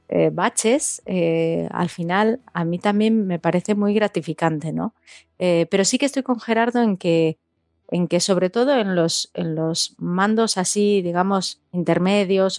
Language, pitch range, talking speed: Spanish, 165-200 Hz, 160 wpm